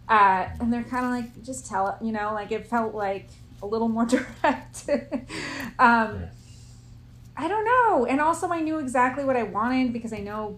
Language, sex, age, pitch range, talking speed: English, female, 30-49, 160-230 Hz, 195 wpm